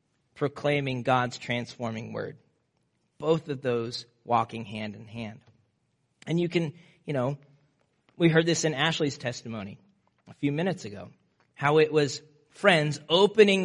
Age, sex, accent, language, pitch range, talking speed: 40-59, male, American, English, 135-170 Hz, 135 wpm